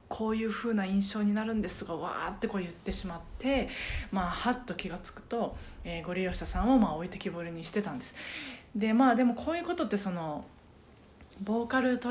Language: Japanese